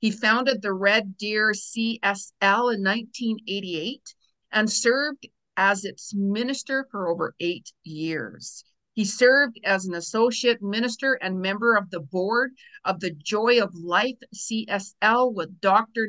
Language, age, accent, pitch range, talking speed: English, 50-69, American, 190-245 Hz, 135 wpm